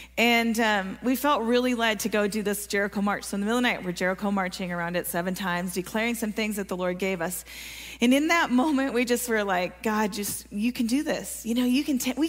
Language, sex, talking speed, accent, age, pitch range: English, female, 265 wpm, American, 30-49, 215-260 Hz